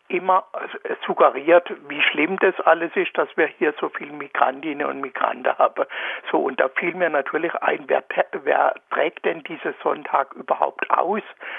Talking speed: 160 wpm